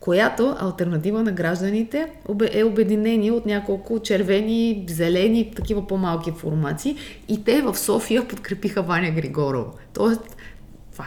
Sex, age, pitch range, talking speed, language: female, 20-39, 165-215 Hz, 115 wpm, Bulgarian